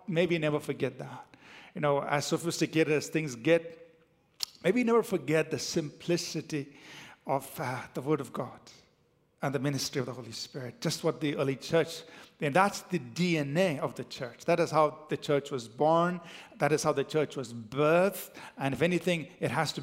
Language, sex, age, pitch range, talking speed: English, male, 50-69, 140-170 Hz, 185 wpm